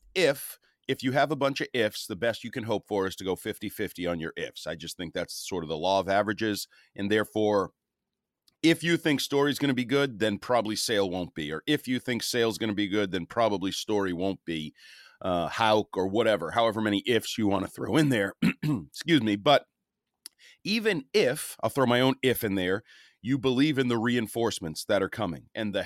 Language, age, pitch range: English, 40-59, 100-135 Hz